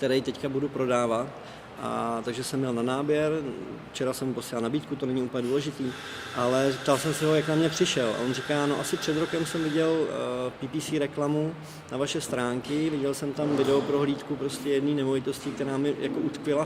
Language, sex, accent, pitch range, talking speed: Czech, male, native, 130-150 Hz, 190 wpm